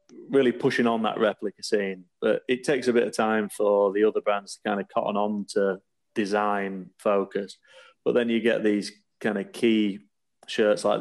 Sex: male